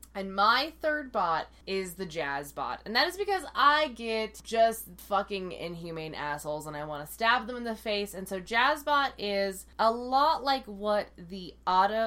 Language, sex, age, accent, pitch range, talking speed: English, female, 20-39, American, 170-225 Hz, 190 wpm